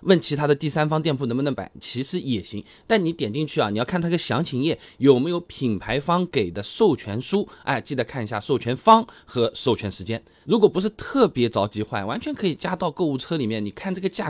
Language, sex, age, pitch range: Chinese, male, 20-39, 115-170 Hz